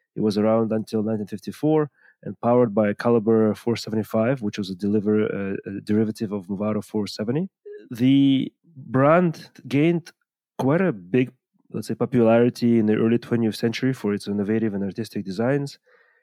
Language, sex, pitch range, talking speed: English, male, 105-125 Hz, 150 wpm